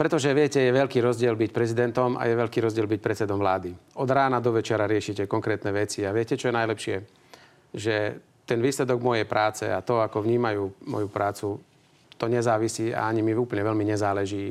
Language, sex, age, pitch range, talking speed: Slovak, male, 40-59, 100-120 Hz, 185 wpm